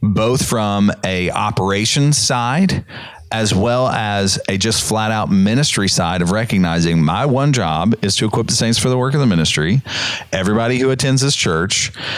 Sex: male